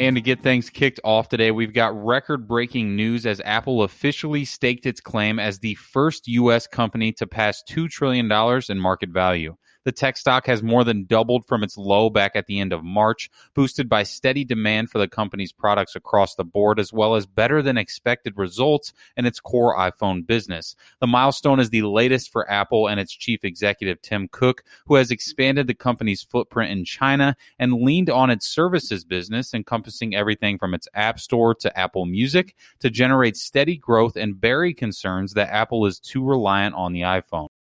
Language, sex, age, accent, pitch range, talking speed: English, male, 30-49, American, 105-125 Hz, 190 wpm